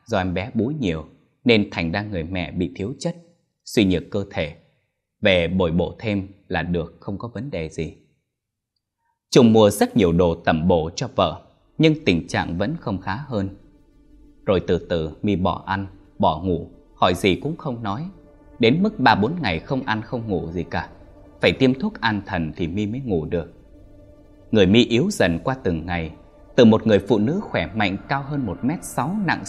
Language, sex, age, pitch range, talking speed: Vietnamese, male, 20-39, 85-120 Hz, 200 wpm